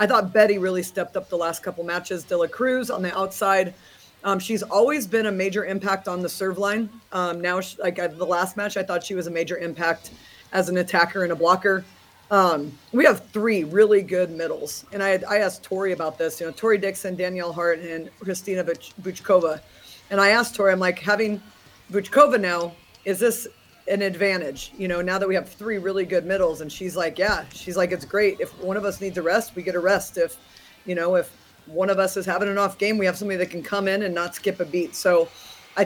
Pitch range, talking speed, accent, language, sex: 175-205 Hz, 230 wpm, American, English, female